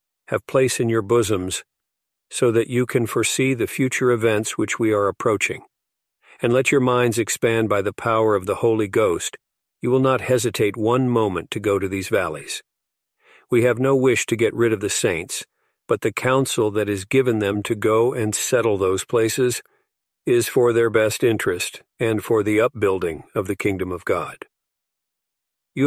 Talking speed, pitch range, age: 180 wpm, 105-125 Hz, 50-69